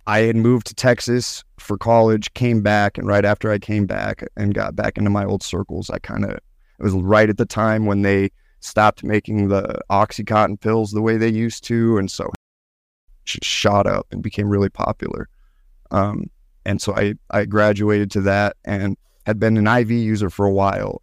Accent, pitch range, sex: American, 100-115 Hz, male